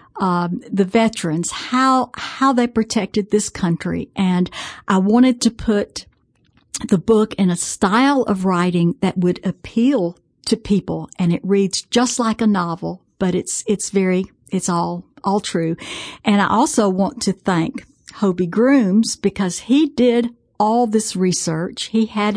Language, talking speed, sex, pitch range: English, 155 wpm, female, 185-230 Hz